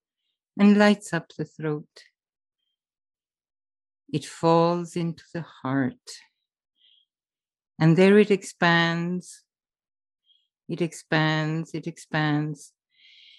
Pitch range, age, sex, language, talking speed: 150-190 Hz, 50-69, female, English, 80 wpm